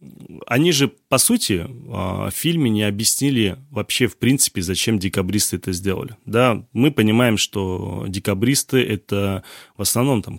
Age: 30-49